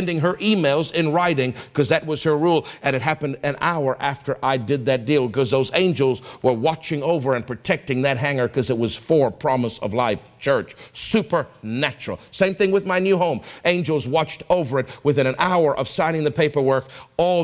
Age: 50-69